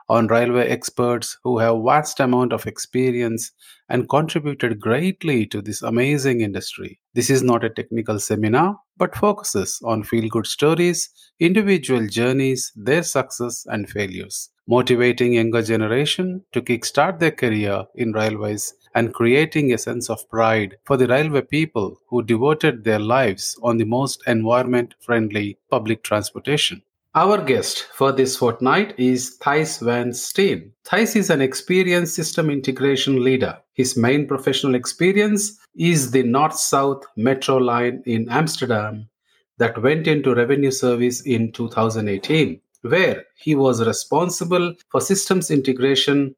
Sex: male